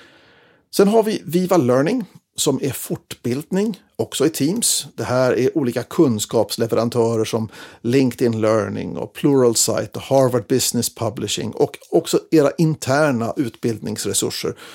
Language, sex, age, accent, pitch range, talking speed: Swedish, male, 50-69, native, 115-135 Hz, 120 wpm